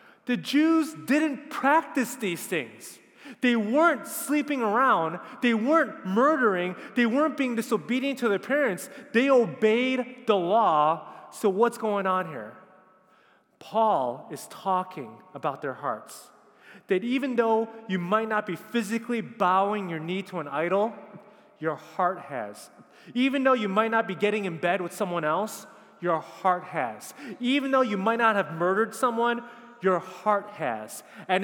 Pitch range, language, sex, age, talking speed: 185-245 Hz, English, male, 30-49, 150 wpm